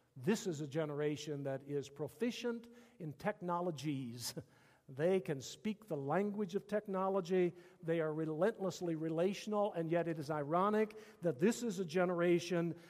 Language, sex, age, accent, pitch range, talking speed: English, male, 50-69, American, 150-210 Hz, 140 wpm